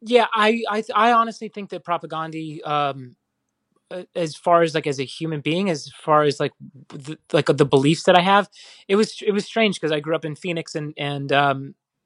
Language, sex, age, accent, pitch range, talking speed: English, male, 30-49, American, 145-185 Hz, 210 wpm